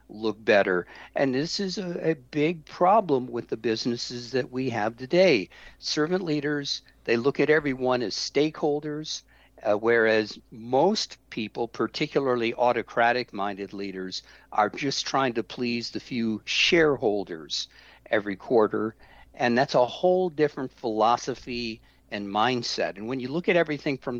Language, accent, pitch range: English, American, 115-150 Hz